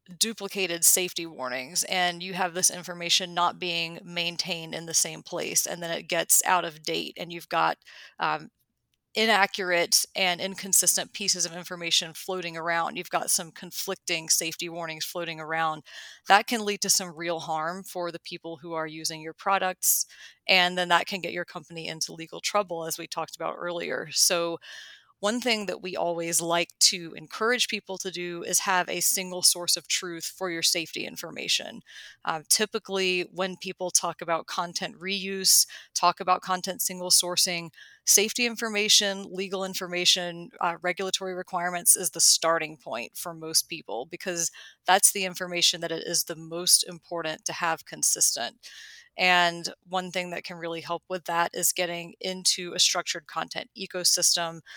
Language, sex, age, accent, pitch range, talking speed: English, female, 30-49, American, 170-185 Hz, 165 wpm